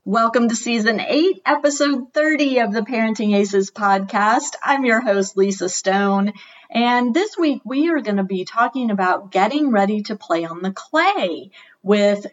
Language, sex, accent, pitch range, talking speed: English, female, American, 185-230 Hz, 165 wpm